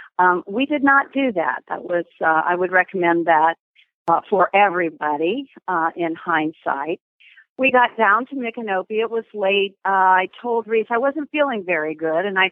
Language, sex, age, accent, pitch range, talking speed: English, female, 50-69, American, 175-210 Hz, 180 wpm